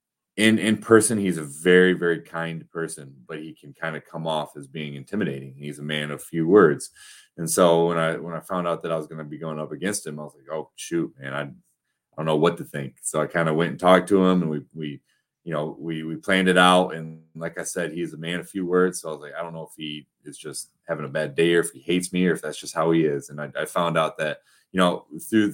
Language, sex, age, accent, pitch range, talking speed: English, male, 30-49, American, 75-90 Hz, 285 wpm